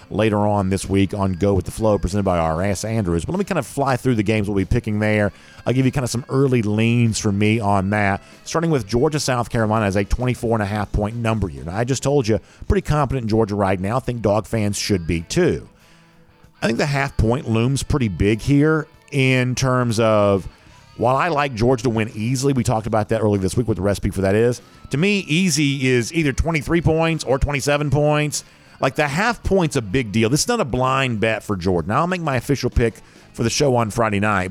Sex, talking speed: male, 240 wpm